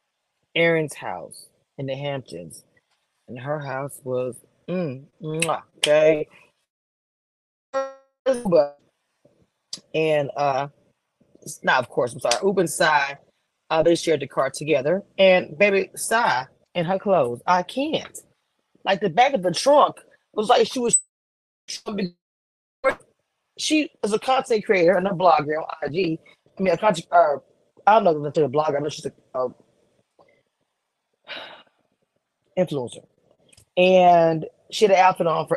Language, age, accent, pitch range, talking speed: English, 30-49, American, 150-205 Hz, 140 wpm